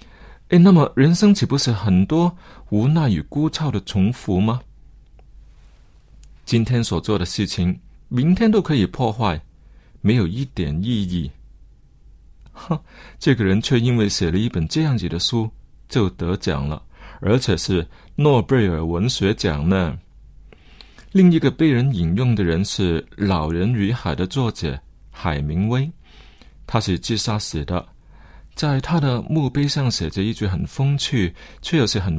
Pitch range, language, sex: 85-125 Hz, Chinese, male